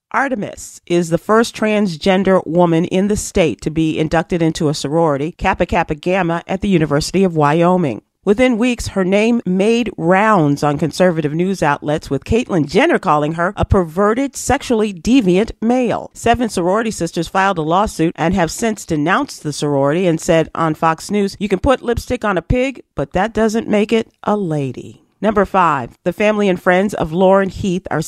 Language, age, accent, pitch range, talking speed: English, 40-59, American, 160-210 Hz, 180 wpm